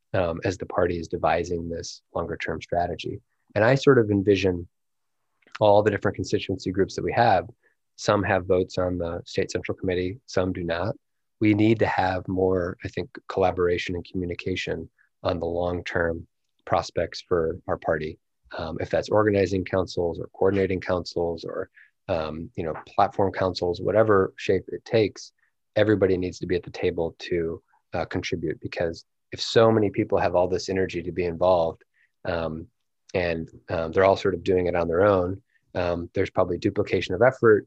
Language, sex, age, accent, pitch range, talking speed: English, male, 30-49, American, 85-95 Hz, 175 wpm